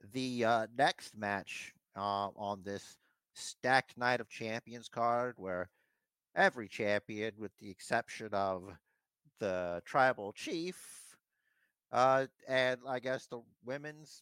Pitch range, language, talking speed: 100-125 Hz, English, 120 wpm